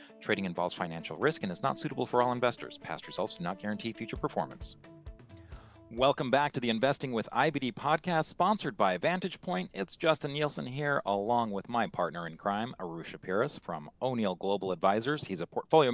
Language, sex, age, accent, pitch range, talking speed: English, male, 40-59, American, 100-140 Hz, 185 wpm